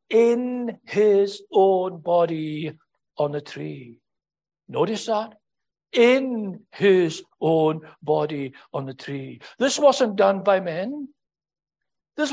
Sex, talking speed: male, 105 wpm